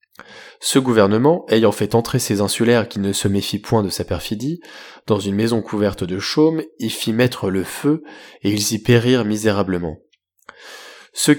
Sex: male